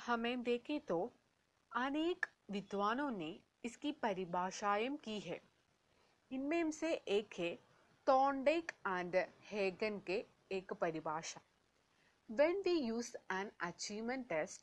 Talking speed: 70 wpm